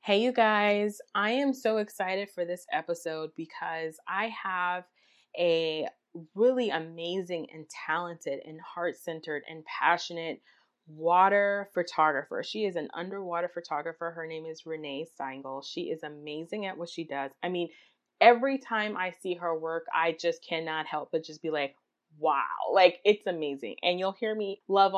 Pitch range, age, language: 160-195 Hz, 20-39, English